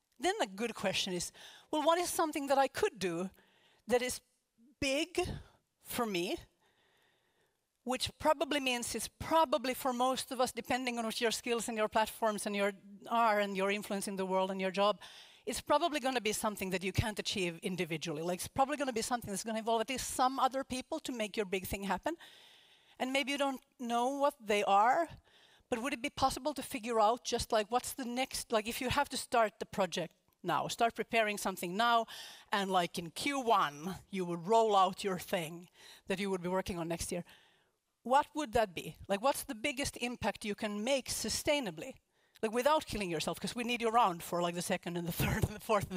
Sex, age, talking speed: female, 40-59, 215 wpm